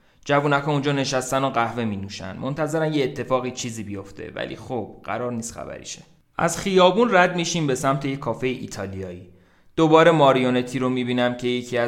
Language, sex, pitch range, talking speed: Persian, male, 110-145 Hz, 165 wpm